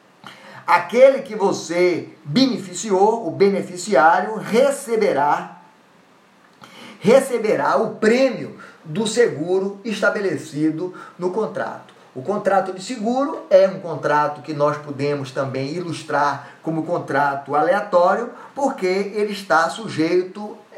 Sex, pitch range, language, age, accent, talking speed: male, 155-205 Hz, Portuguese, 20-39, Brazilian, 100 wpm